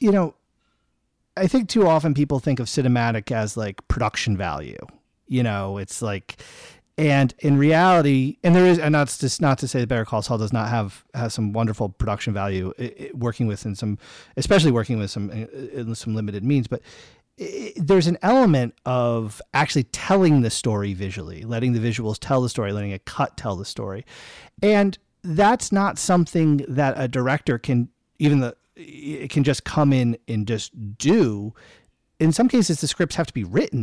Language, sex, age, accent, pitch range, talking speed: English, male, 30-49, American, 110-150 Hz, 185 wpm